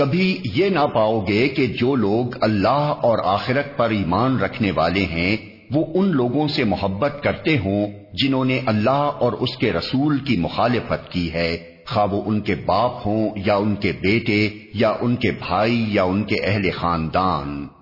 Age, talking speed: 50-69, 175 wpm